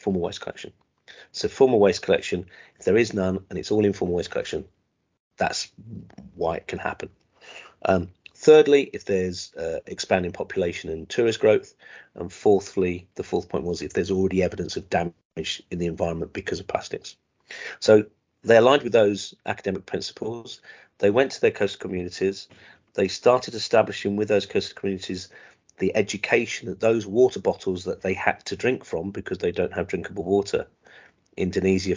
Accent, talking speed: British, 165 wpm